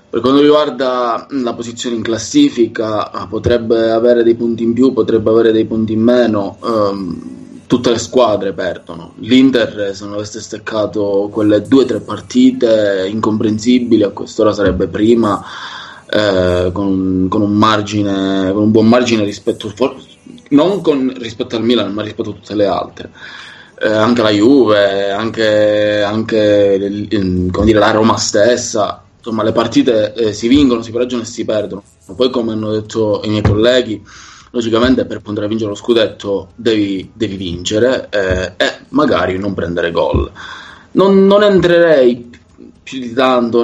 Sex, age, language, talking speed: male, 20-39, Italian, 150 wpm